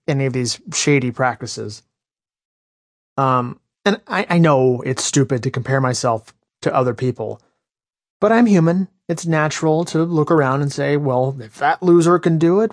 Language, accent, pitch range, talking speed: English, American, 125-155 Hz, 165 wpm